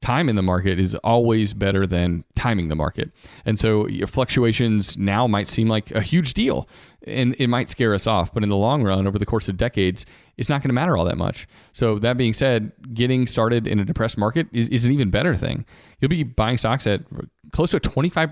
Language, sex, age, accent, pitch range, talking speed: English, male, 30-49, American, 105-130 Hz, 235 wpm